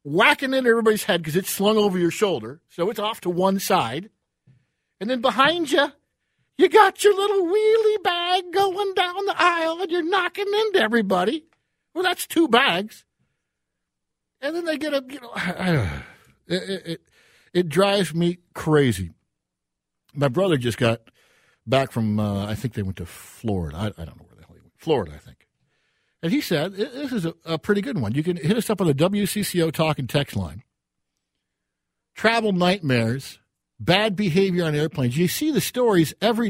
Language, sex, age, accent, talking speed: English, male, 50-69, American, 185 wpm